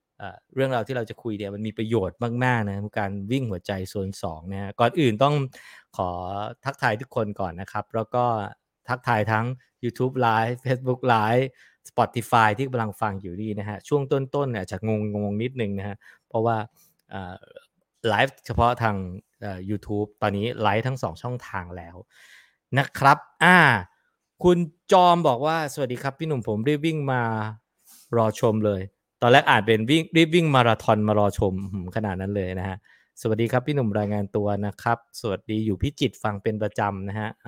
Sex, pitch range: male, 105-125 Hz